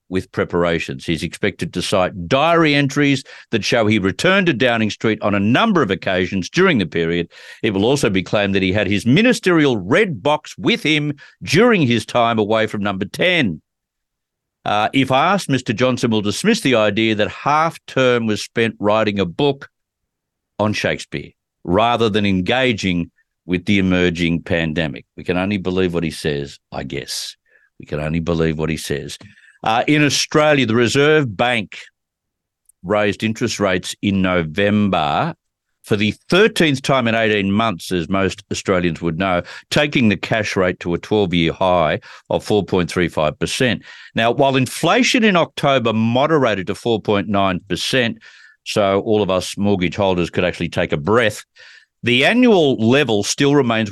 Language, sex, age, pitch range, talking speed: English, male, 50-69, 90-130 Hz, 160 wpm